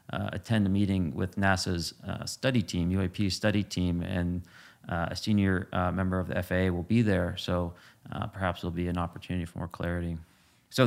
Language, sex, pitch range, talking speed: English, male, 95-110 Hz, 200 wpm